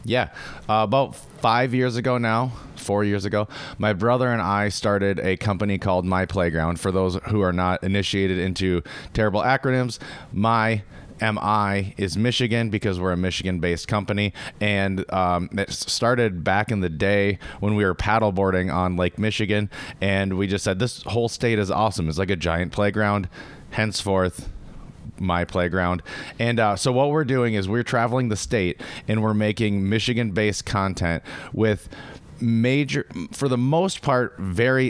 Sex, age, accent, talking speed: male, 30-49, American, 160 wpm